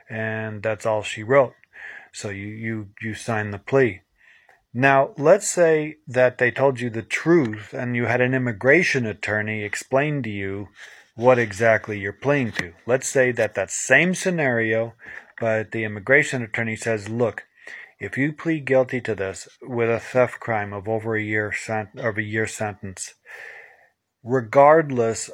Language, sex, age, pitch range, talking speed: English, male, 40-59, 110-135 Hz, 160 wpm